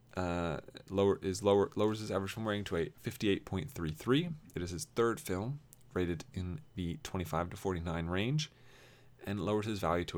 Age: 20-39